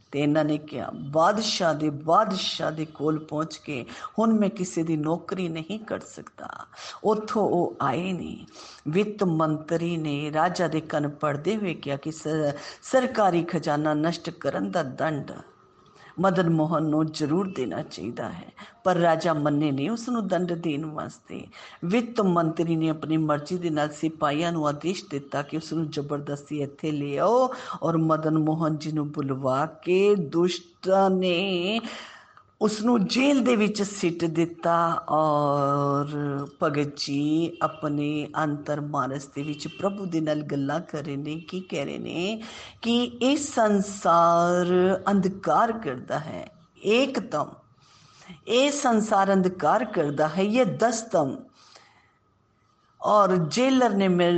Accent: native